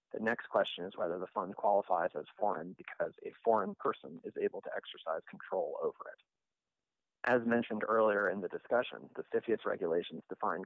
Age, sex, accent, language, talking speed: 30-49, male, American, English, 175 wpm